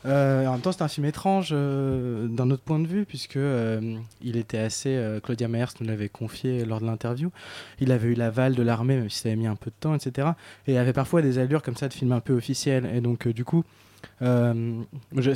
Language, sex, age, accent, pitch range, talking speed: French, male, 20-39, French, 115-140 Hz, 245 wpm